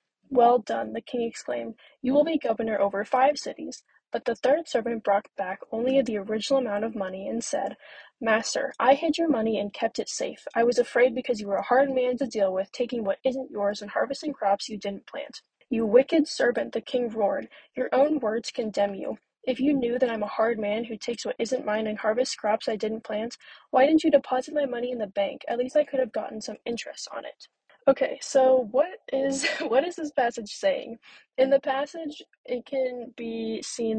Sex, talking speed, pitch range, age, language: female, 215 wpm, 220-270 Hz, 10-29, English